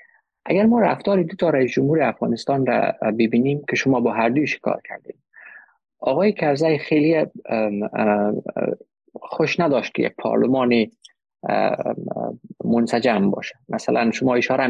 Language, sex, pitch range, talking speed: Persian, male, 110-140 Hz, 125 wpm